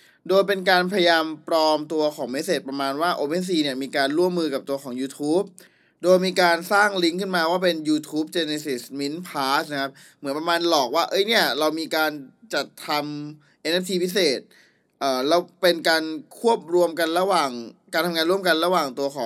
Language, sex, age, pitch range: Thai, male, 20-39, 135-170 Hz